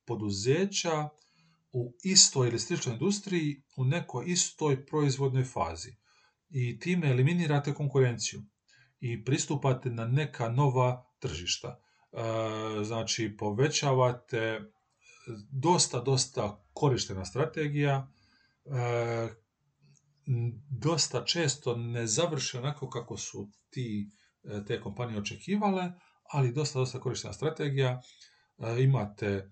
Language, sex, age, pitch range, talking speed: Croatian, male, 40-59, 110-140 Hz, 95 wpm